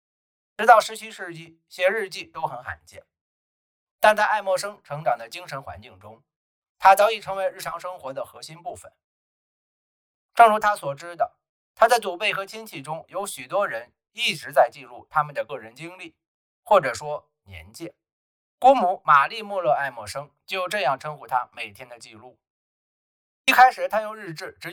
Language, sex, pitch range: Chinese, male, 120-195 Hz